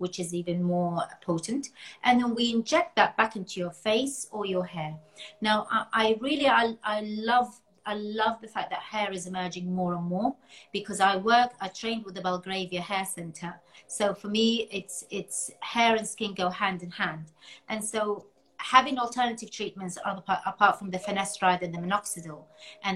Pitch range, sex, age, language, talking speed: 175-210 Hz, female, 30-49, English, 185 wpm